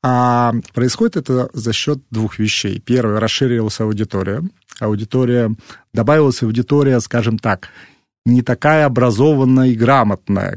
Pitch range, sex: 115-160 Hz, male